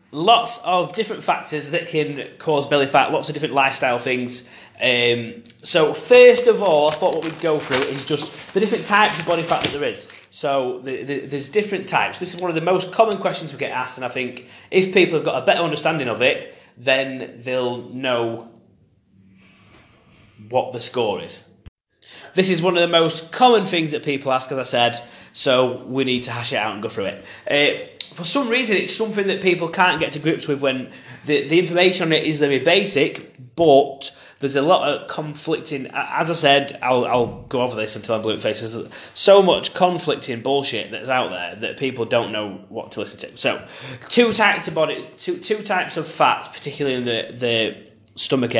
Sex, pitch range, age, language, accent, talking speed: male, 125-180 Hz, 20-39, English, British, 205 wpm